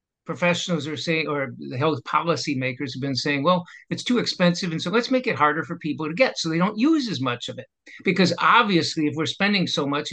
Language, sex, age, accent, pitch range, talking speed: English, male, 60-79, American, 145-180 Hz, 230 wpm